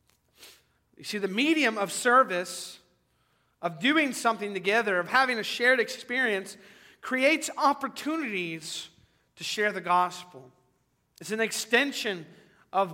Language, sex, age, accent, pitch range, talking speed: English, male, 40-59, American, 145-215 Hz, 115 wpm